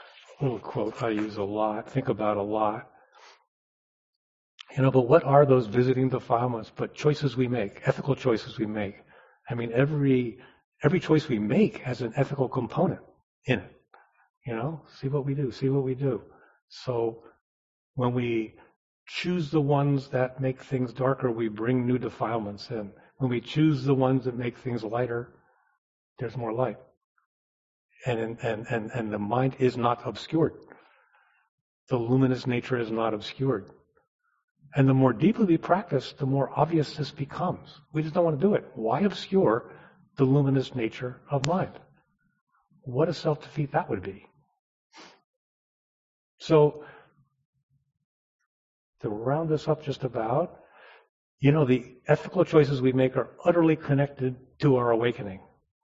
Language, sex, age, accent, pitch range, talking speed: English, male, 40-59, American, 115-145 Hz, 155 wpm